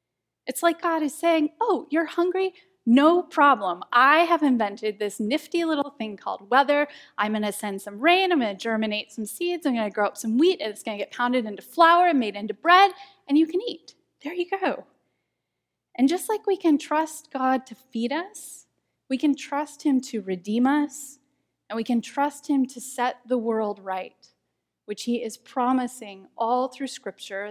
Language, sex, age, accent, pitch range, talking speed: English, female, 10-29, American, 240-320 Hz, 200 wpm